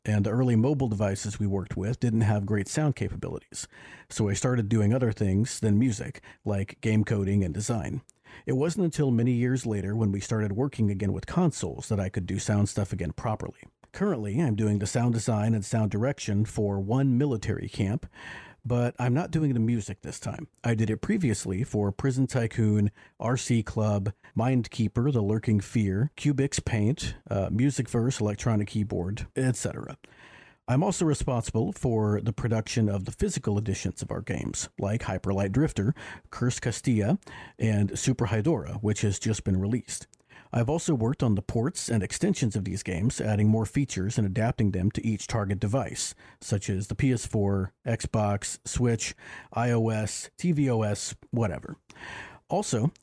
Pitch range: 105-125 Hz